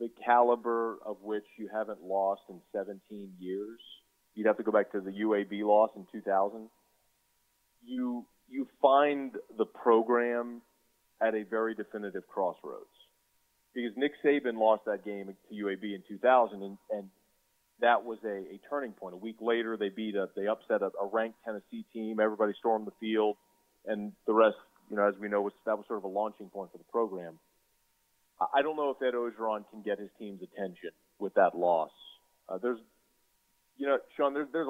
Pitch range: 100-120 Hz